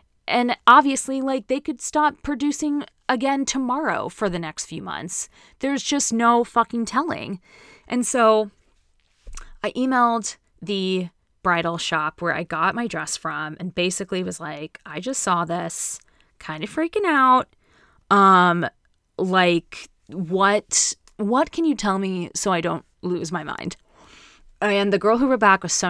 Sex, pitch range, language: female, 175-230 Hz, English